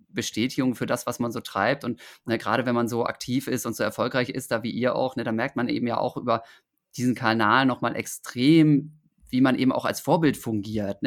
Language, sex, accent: German, male, German